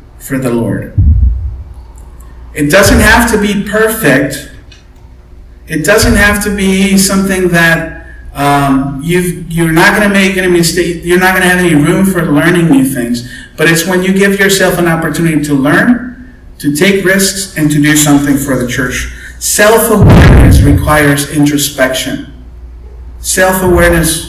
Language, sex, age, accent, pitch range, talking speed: English, male, 50-69, American, 115-180 Hz, 145 wpm